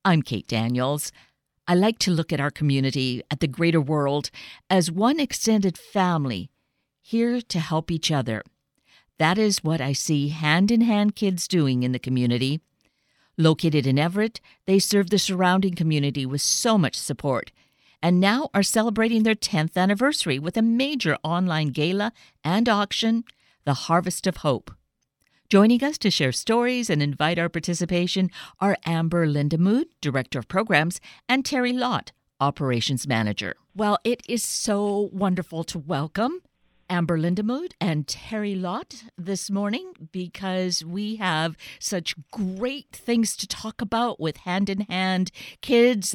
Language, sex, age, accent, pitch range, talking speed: English, female, 50-69, American, 155-215 Hz, 145 wpm